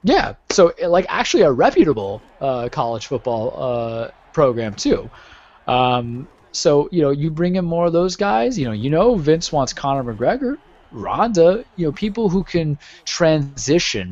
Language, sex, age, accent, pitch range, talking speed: English, male, 20-39, American, 120-160 Hz, 160 wpm